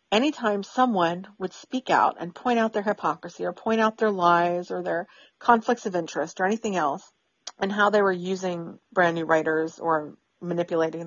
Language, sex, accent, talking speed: English, female, American, 180 wpm